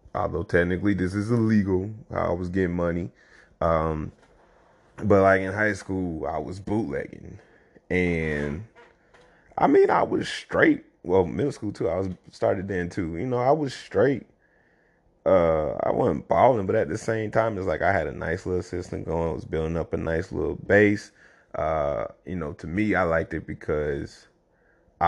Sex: male